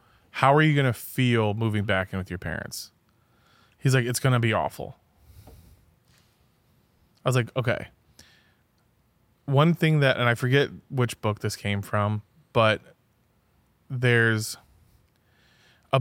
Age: 20-39